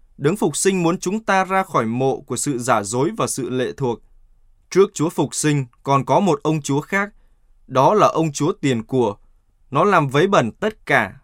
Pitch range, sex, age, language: 120-160 Hz, male, 20-39, Vietnamese